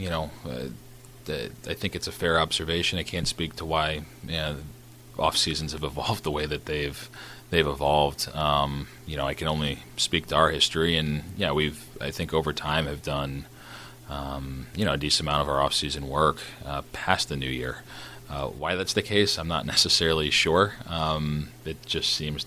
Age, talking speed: 30-49, 205 wpm